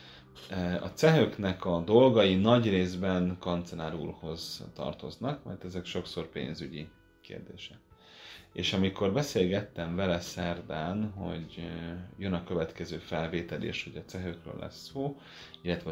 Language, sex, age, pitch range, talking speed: Hungarian, male, 30-49, 85-100 Hz, 115 wpm